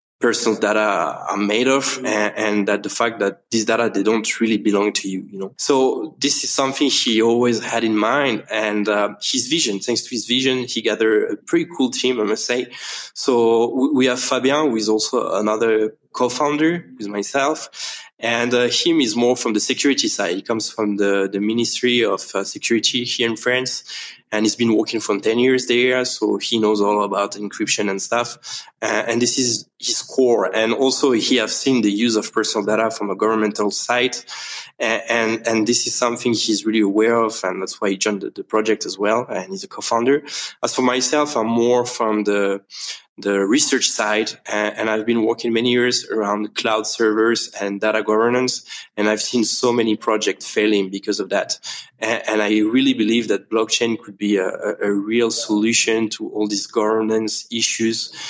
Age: 20-39